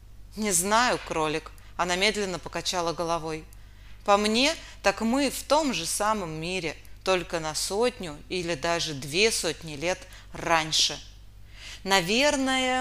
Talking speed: 120 wpm